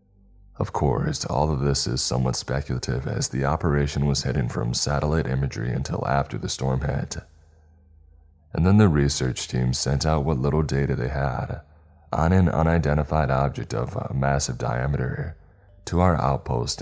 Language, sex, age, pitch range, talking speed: English, male, 20-39, 70-90 Hz, 155 wpm